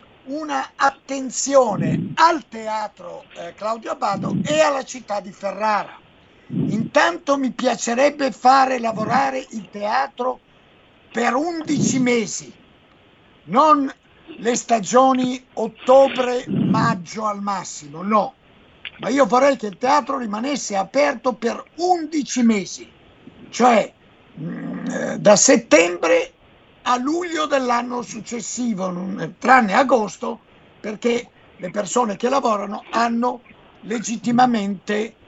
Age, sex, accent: 50-69, male, native